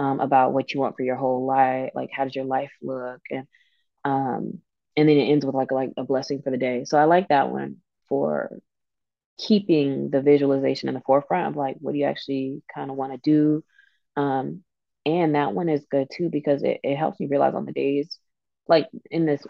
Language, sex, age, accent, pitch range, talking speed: English, female, 20-39, American, 130-150 Hz, 220 wpm